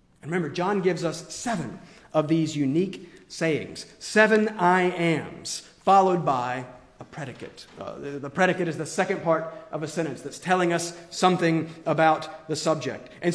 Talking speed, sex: 155 wpm, male